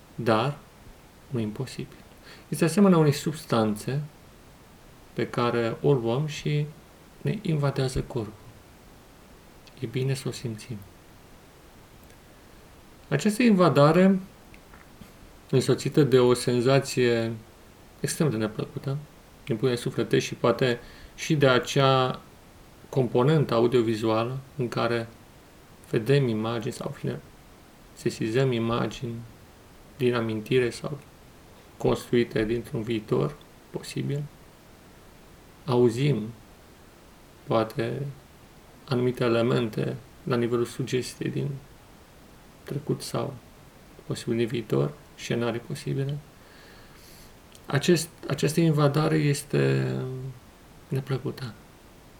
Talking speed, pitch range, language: 85 wpm, 115-145 Hz, Romanian